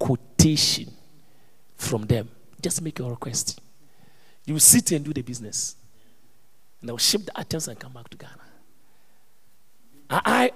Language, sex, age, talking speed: English, male, 40-59, 140 wpm